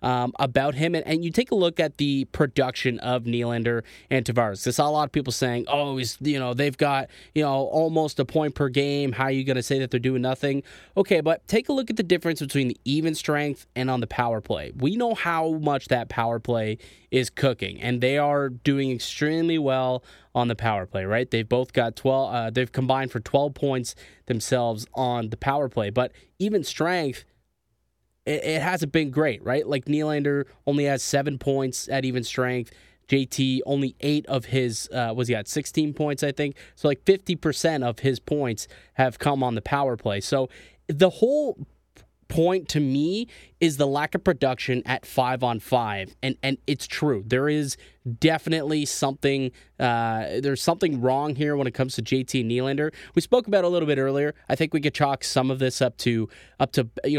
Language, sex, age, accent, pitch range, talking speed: English, male, 20-39, American, 125-150 Hz, 205 wpm